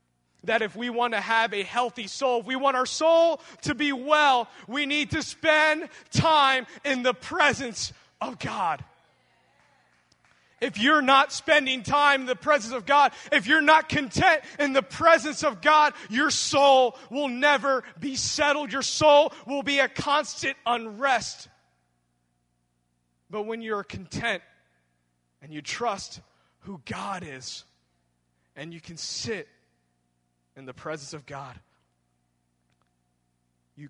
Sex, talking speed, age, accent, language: male, 140 wpm, 20-39, American, English